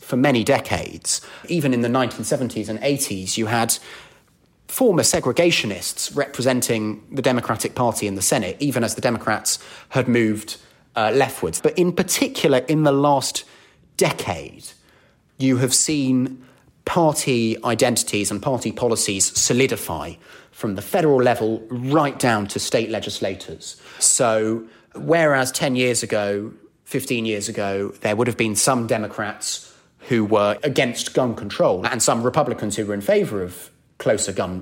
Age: 30-49